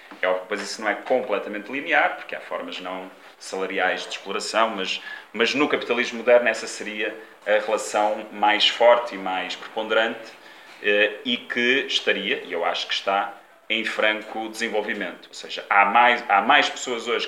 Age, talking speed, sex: 30-49, 165 wpm, male